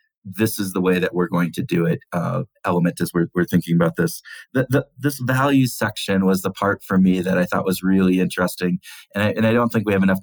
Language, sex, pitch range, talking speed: English, male, 90-105 Hz, 250 wpm